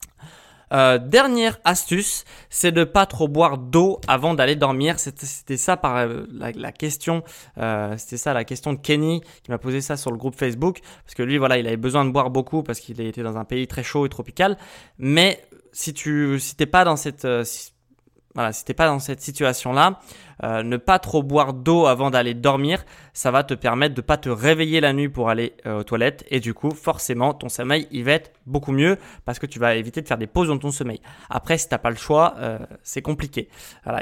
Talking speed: 230 wpm